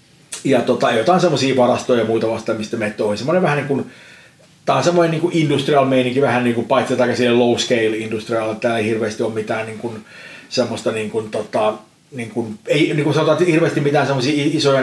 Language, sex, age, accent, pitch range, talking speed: Finnish, male, 30-49, native, 115-140 Hz, 200 wpm